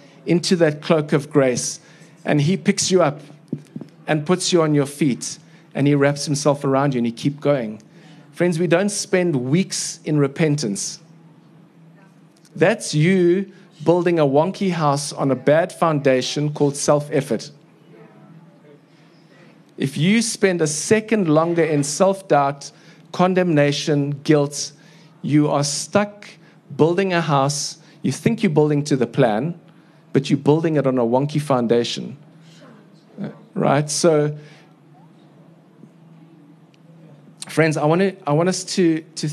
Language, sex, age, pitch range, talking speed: English, male, 50-69, 145-170 Hz, 135 wpm